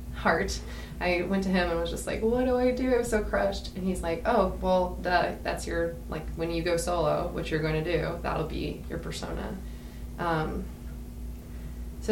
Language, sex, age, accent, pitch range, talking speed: English, female, 20-39, American, 155-185 Hz, 205 wpm